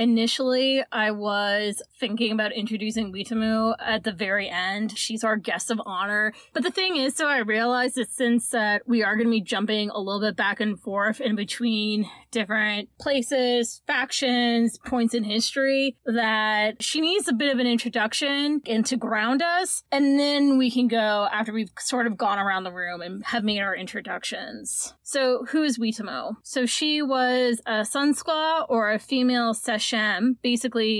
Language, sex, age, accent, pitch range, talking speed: English, female, 20-39, American, 215-255 Hz, 175 wpm